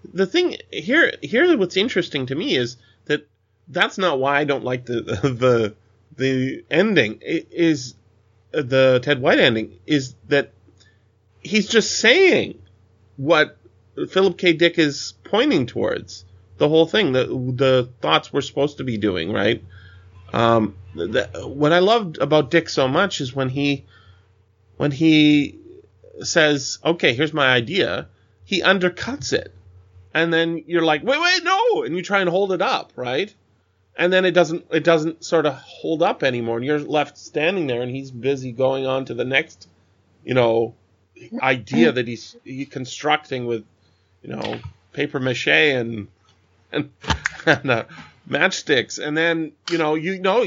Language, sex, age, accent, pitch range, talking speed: English, male, 30-49, American, 110-165 Hz, 160 wpm